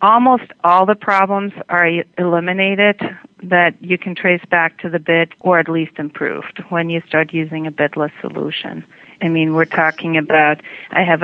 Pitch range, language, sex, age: 155-180 Hz, English, female, 40-59